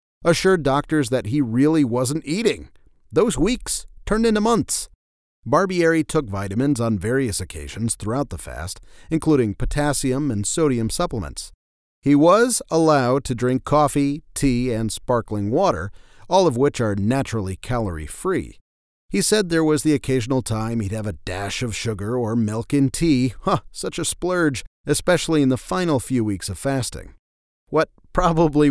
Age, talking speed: 40-59, 150 wpm